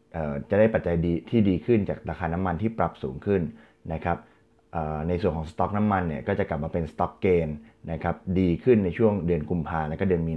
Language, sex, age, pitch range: Thai, male, 20-39, 80-100 Hz